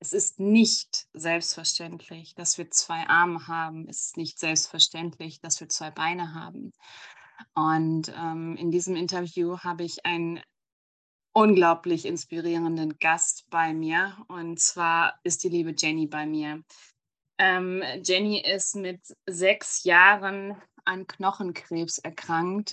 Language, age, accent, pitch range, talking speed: German, 20-39, German, 165-185 Hz, 125 wpm